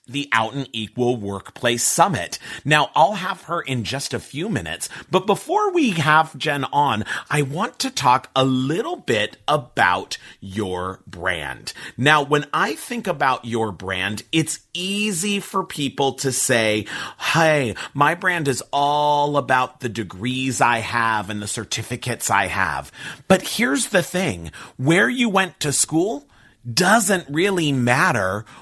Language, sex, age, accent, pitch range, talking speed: English, male, 40-59, American, 120-170 Hz, 150 wpm